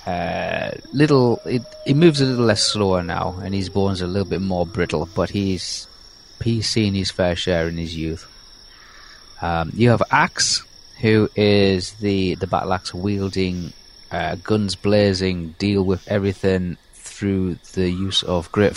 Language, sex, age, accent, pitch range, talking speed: English, male, 30-49, British, 90-115 Hz, 165 wpm